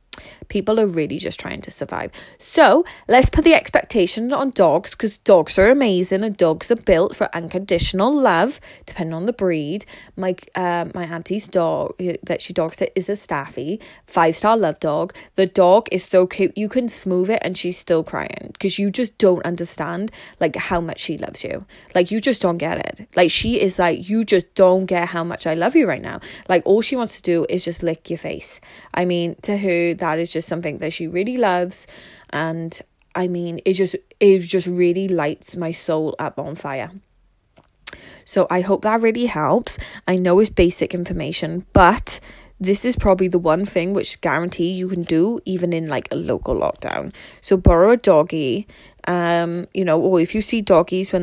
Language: English